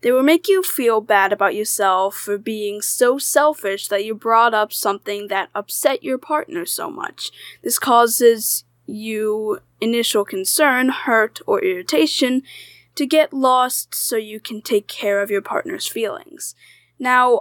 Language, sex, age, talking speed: English, female, 10-29, 150 wpm